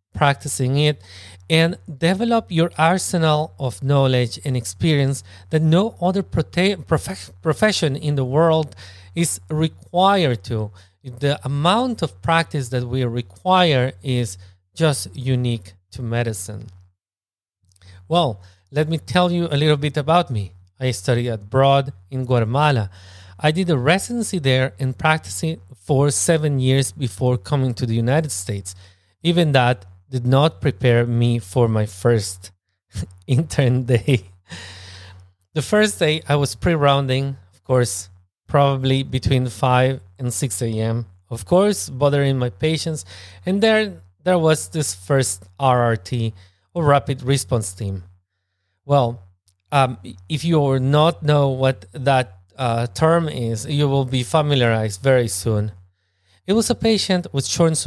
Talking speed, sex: 135 wpm, male